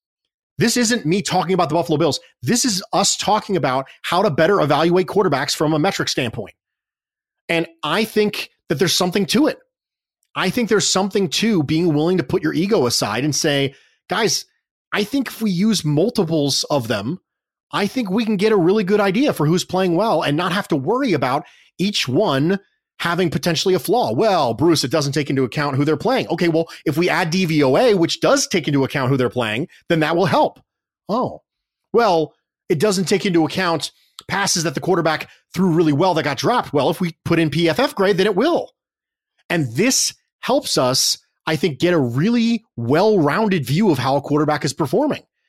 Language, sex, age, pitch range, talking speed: English, male, 30-49, 155-200 Hz, 200 wpm